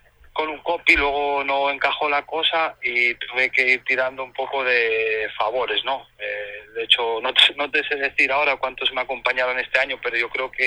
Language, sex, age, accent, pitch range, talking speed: Spanish, male, 30-49, Spanish, 115-140 Hz, 200 wpm